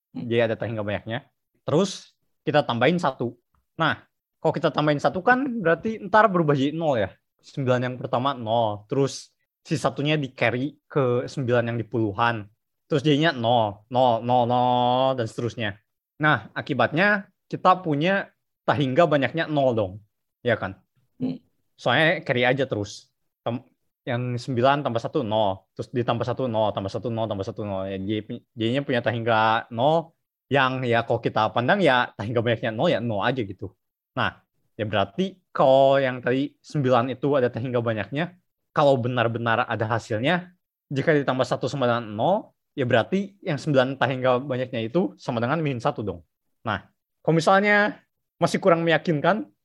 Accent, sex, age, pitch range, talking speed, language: native, male, 20-39, 115-150 Hz, 155 wpm, Indonesian